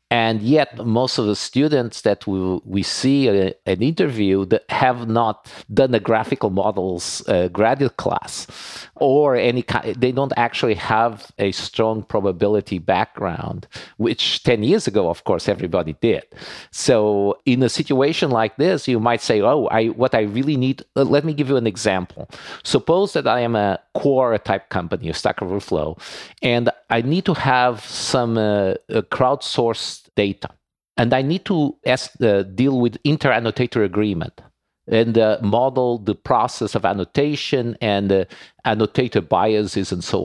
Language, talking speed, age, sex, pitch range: English, 160 wpm, 50-69, male, 100-125 Hz